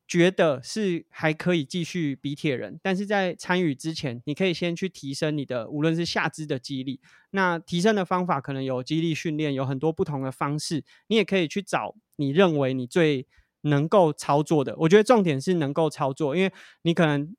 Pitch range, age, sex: 145-180 Hz, 20-39, male